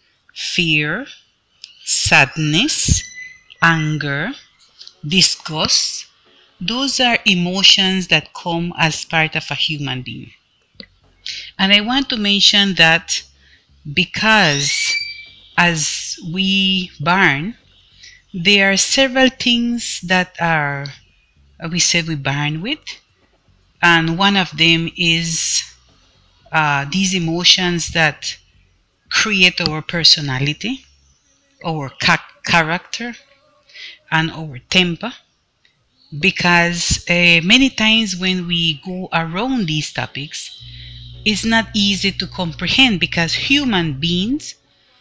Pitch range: 155-205 Hz